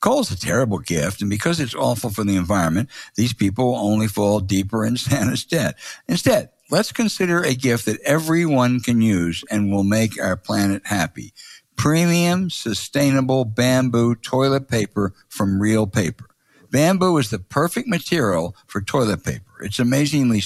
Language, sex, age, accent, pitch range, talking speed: English, male, 60-79, American, 110-150 Hz, 160 wpm